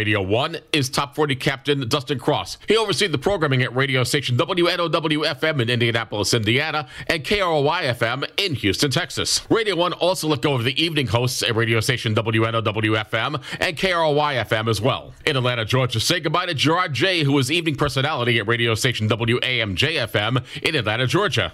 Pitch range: 120-155 Hz